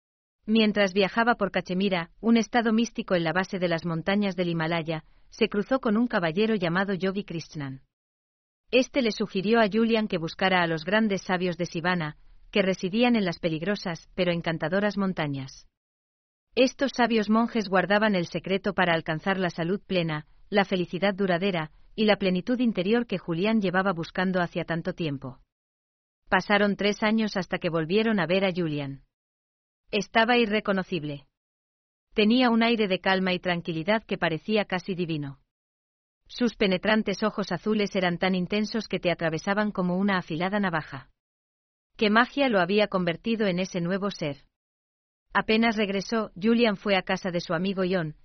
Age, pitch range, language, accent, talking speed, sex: 40-59, 165-215 Hz, German, Spanish, 155 wpm, female